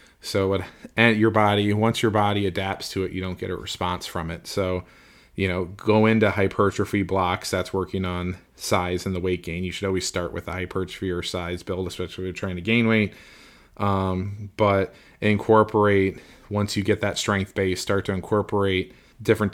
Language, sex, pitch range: English, male, 95-105 Hz